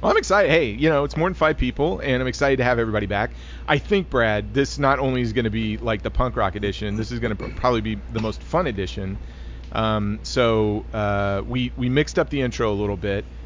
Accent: American